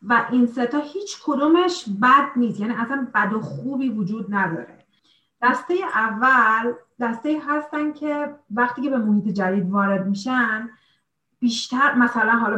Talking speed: 140 wpm